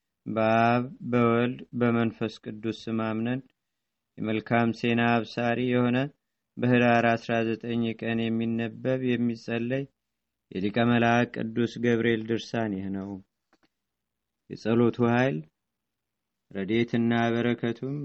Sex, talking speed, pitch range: male, 75 wpm, 115-125 Hz